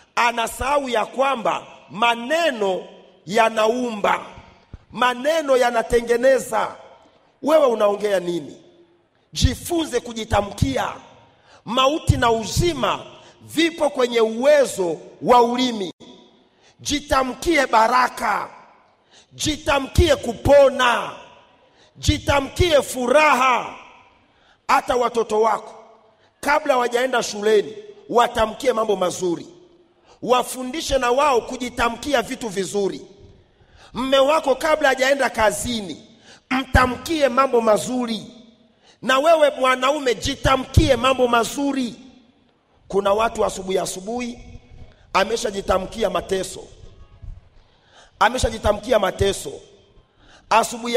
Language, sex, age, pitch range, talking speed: Swahili, male, 40-59, 215-270 Hz, 75 wpm